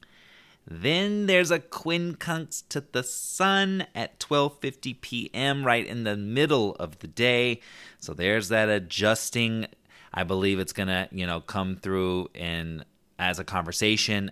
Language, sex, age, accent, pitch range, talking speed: English, male, 30-49, American, 90-115 Hz, 145 wpm